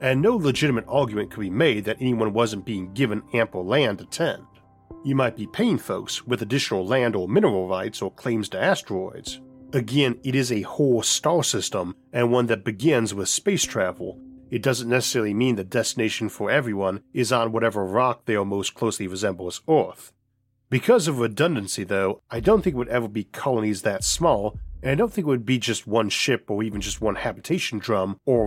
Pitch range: 105-130 Hz